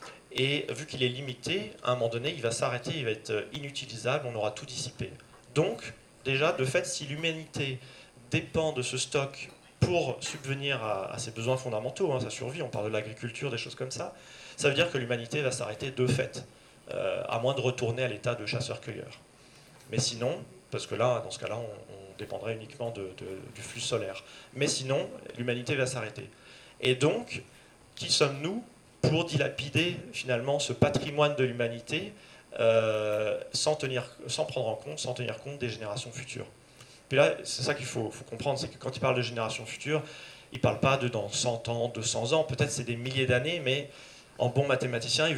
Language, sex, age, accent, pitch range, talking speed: French, male, 30-49, French, 115-140 Hz, 190 wpm